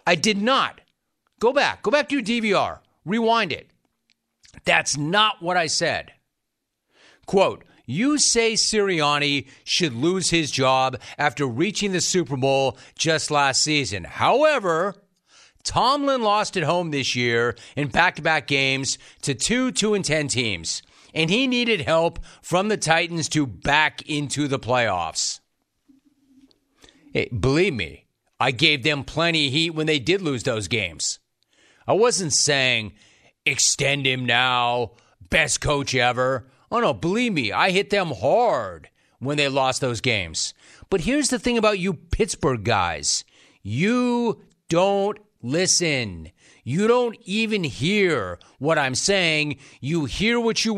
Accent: American